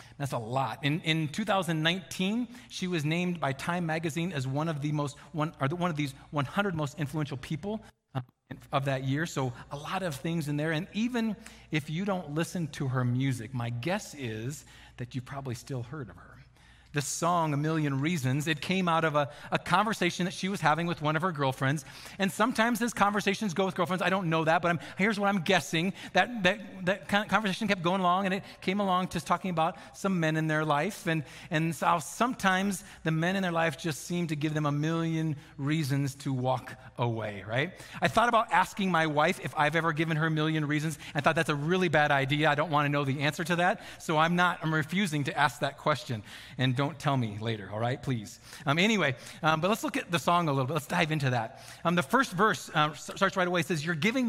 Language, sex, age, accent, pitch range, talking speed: English, male, 40-59, American, 145-180 Hz, 230 wpm